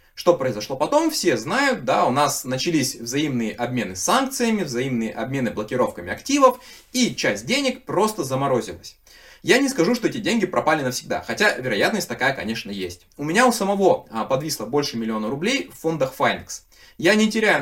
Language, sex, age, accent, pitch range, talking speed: Russian, male, 20-39, native, 120-200 Hz, 165 wpm